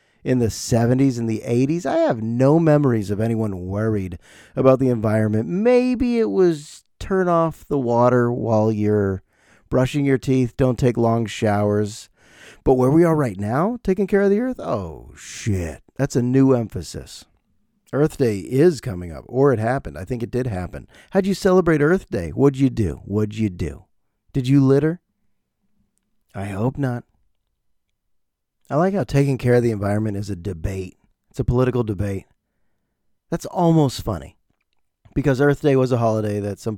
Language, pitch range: English, 105-150 Hz